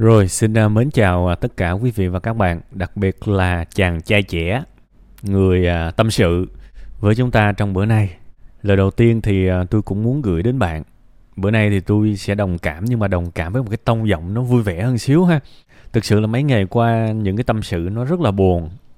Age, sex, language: 20-39, male, Vietnamese